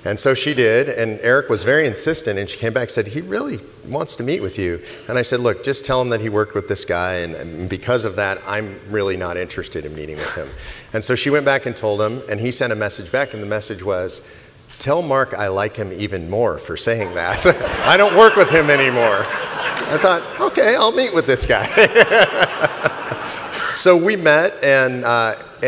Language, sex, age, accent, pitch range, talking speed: English, male, 40-59, American, 100-125 Hz, 220 wpm